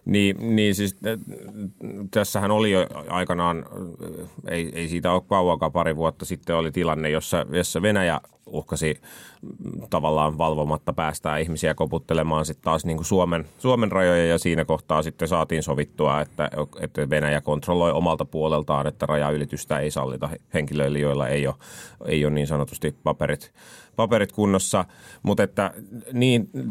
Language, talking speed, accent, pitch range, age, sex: Finnish, 140 wpm, native, 75-90 Hz, 30-49, male